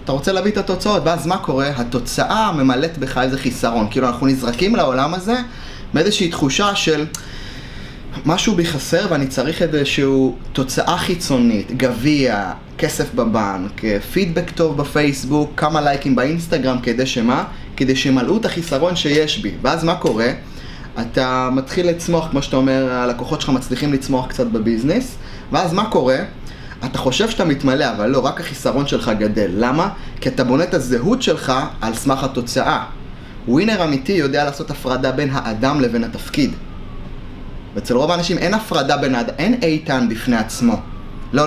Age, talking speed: 20-39, 150 wpm